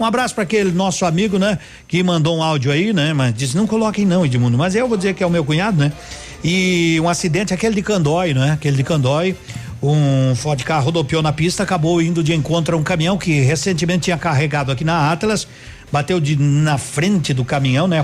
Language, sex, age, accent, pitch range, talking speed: Portuguese, male, 50-69, Brazilian, 145-200 Hz, 220 wpm